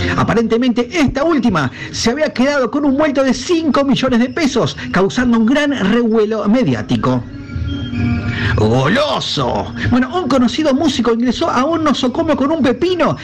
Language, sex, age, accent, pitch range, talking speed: Spanish, male, 50-69, Argentinian, 195-280 Hz, 140 wpm